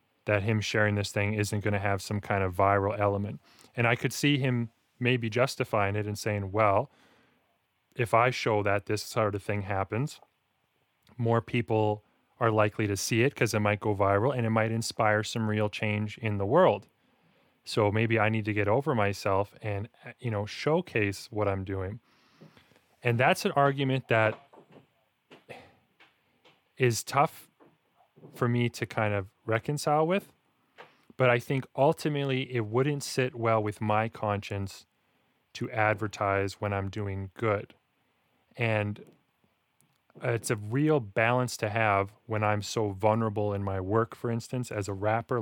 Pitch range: 105-125 Hz